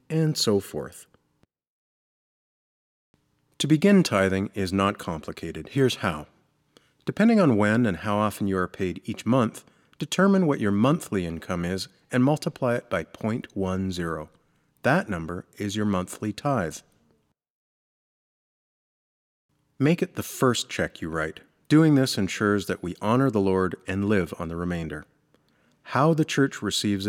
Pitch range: 95-135 Hz